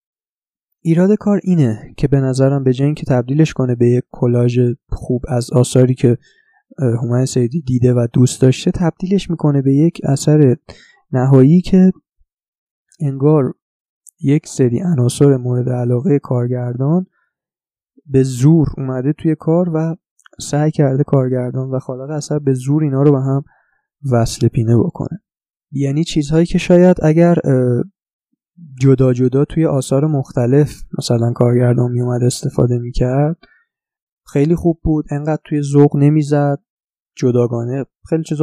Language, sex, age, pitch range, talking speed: Persian, male, 20-39, 130-160 Hz, 130 wpm